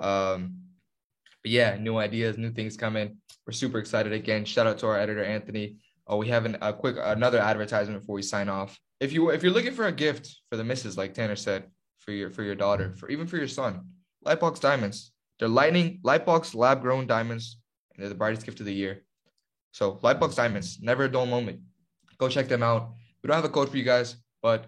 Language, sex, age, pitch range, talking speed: English, male, 10-29, 100-125 Hz, 220 wpm